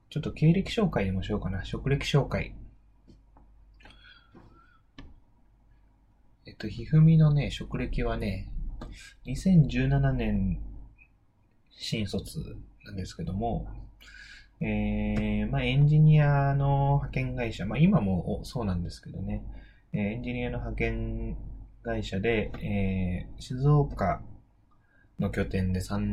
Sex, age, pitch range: male, 20-39, 95-130 Hz